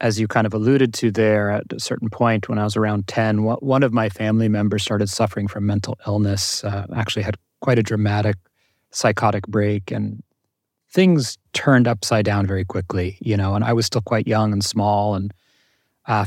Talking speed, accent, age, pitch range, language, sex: 195 wpm, American, 30-49, 105-125 Hz, English, male